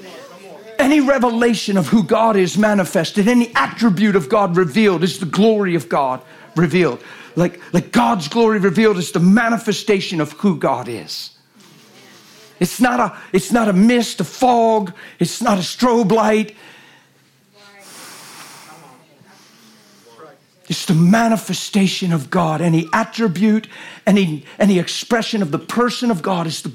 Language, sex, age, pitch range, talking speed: English, male, 50-69, 155-205 Hz, 130 wpm